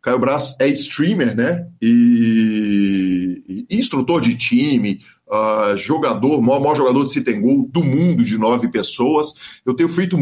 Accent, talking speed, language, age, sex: Brazilian, 155 wpm, Portuguese, 50-69, male